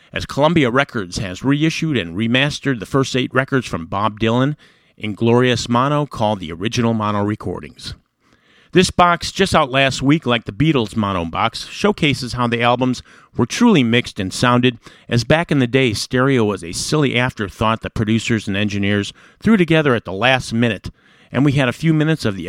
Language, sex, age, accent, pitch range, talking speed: English, male, 50-69, American, 105-145 Hz, 185 wpm